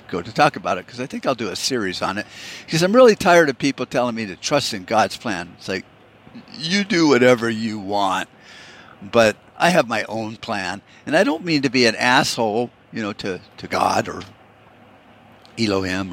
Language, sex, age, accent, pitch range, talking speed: English, male, 50-69, American, 105-135 Hz, 205 wpm